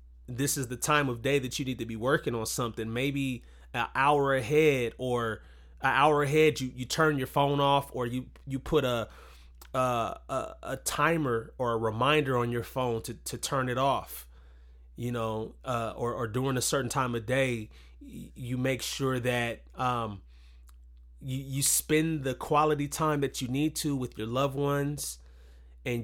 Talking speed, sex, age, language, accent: 180 wpm, male, 30-49, English, American